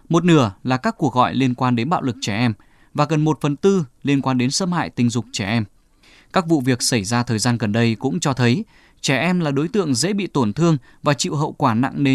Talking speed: 265 wpm